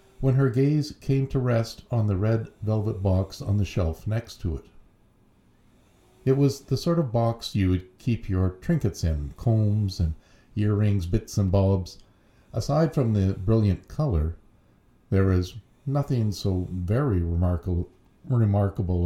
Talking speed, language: 145 wpm, English